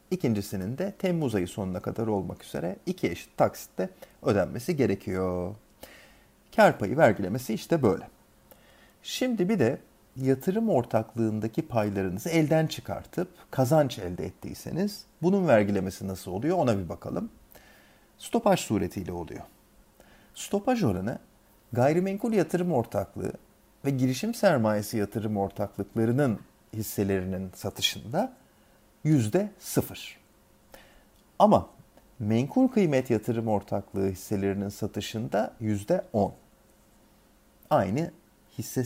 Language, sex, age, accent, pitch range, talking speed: Turkish, male, 40-59, native, 100-145 Hz, 95 wpm